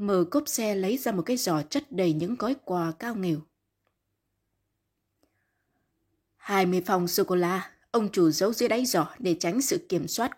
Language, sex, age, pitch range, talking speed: Vietnamese, female, 20-39, 145-205 Hz, 185 wpm